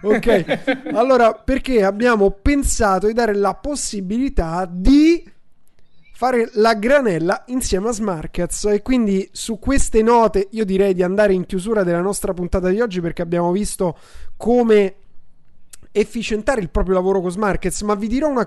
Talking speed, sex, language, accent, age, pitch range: 150 wpm, male, Italian, native, 30-49, 175-215 Hz